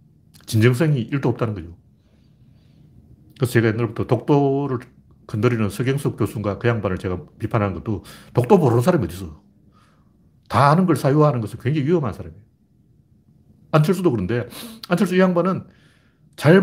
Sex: male